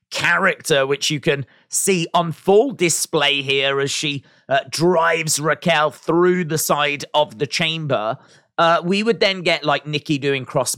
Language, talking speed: English, 160 wpm